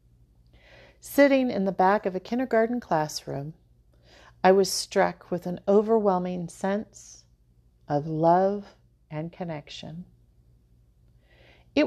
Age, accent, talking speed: 40-59, American, 100 wpm